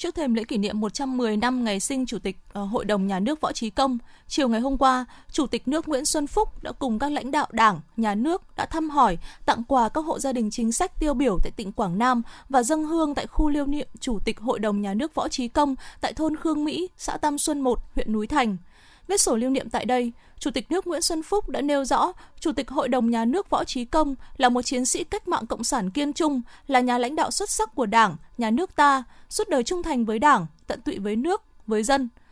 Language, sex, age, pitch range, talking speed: Vietnamese, female, 20-39, 230-310 Hz, 255 wpm